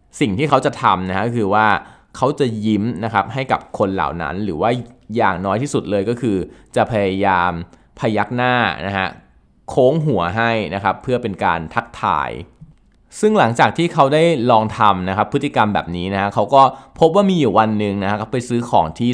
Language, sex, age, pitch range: Thai, male, 20-39, 95-125 Hz